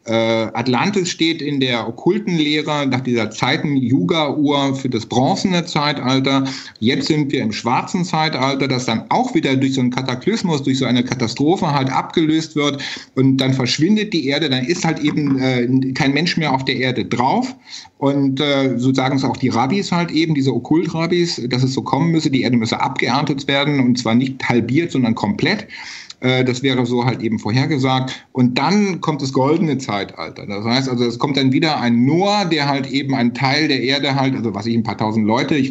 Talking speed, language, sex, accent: 195 wpm, German, male, German